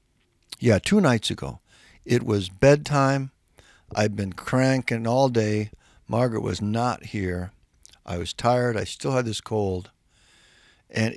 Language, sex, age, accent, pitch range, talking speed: English, male, 60-79, American, 105-130 Hz, 135 wpm